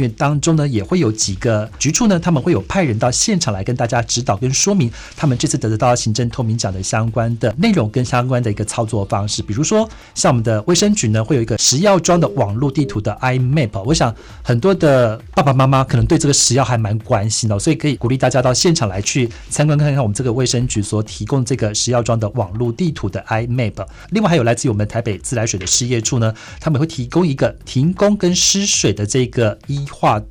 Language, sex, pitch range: English, male, 110-145 Hz